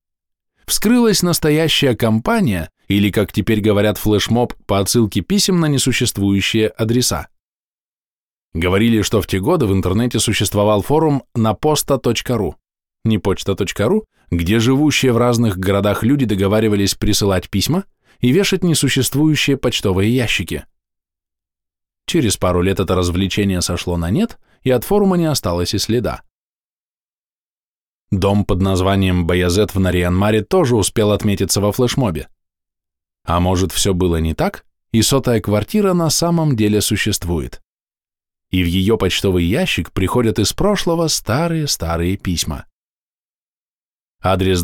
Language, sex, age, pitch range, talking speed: Russian, male, 20-39, 90-125 Hz, 120 wpm